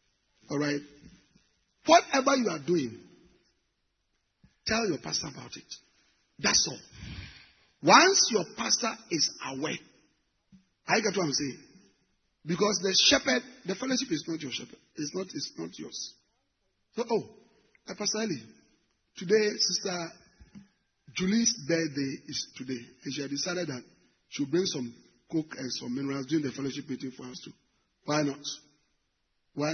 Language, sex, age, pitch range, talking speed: English, male, 40-59, 150-240 Hz, 135 wpm